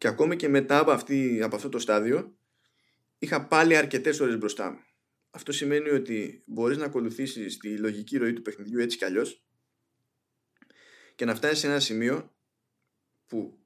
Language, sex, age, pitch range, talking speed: Greek, male, 20-39, 110-155 Hz, 160 wpm